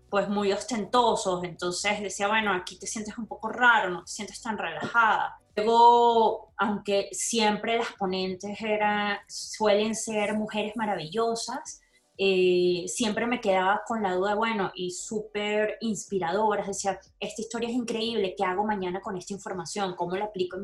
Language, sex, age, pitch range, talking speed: Spanish, female, 20-39, 190-225 Hz, 155 wpm